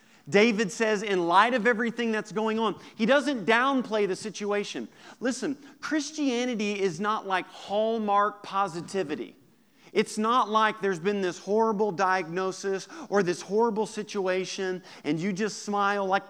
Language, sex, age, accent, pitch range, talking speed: English, male, 40-59, American, 190-230 Hz, 140 wpm